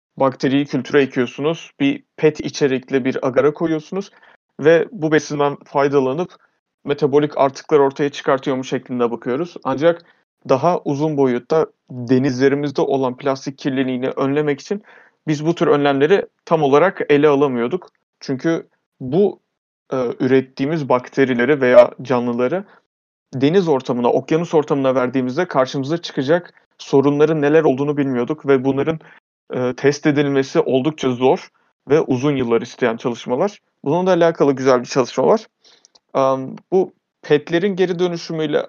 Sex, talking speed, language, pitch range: male, 120 wpm, Turkish, 130-160 Hz